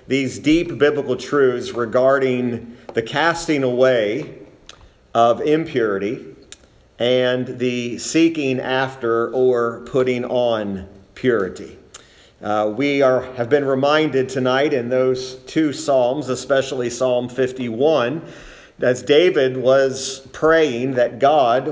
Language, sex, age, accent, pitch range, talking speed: English, male, 40-59, American, 120-135 Hz, 100 wpm